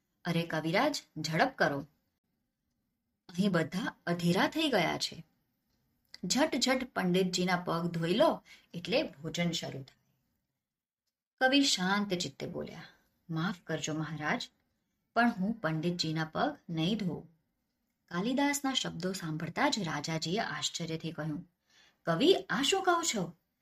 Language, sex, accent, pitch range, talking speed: Gujarati, male, native, 160-225 Hz, 65 wpm